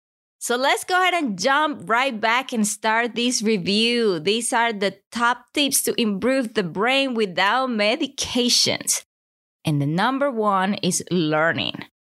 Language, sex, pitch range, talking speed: English, female, 175-240 Hz, 145 wpm